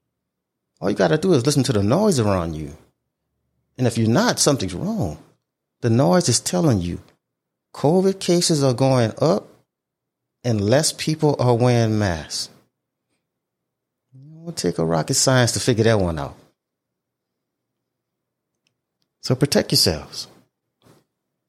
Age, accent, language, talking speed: 30-49, American, English, 135 wpm